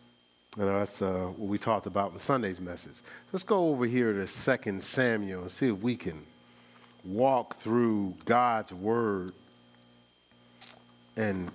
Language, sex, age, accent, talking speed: English, male, 40-59, American, 150 wpm